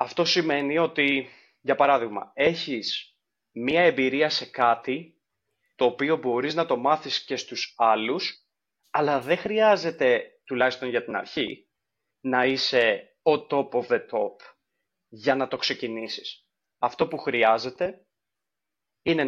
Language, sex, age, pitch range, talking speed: Greek, male, 30-49, 130-170 Hz, 130 wpm